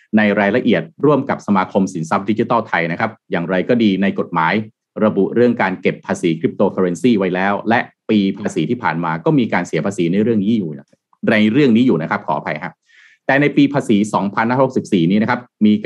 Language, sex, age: Thai, male, 30-49